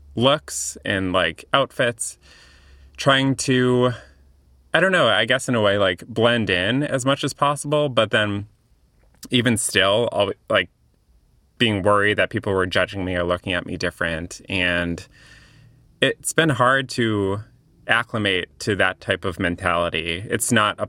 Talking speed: 150 wpm